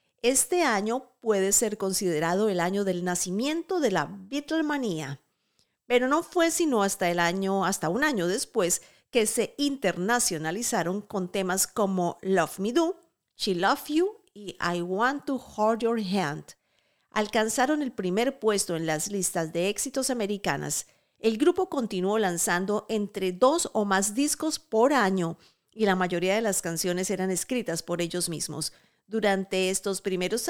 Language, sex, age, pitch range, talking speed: Spanish, female, 50-69, 180-240 Hz, 150 wpm